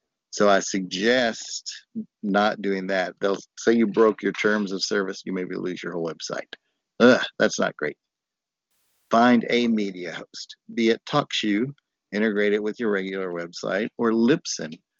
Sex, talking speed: male, 150 wpm